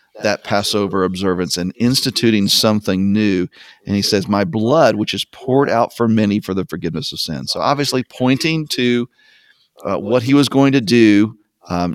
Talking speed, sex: 175 wpm, male